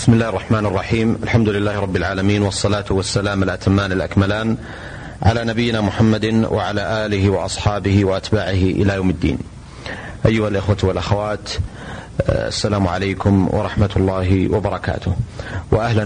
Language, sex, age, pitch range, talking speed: Arabic, male, 30-49, 95-110 Hz, 115 wpm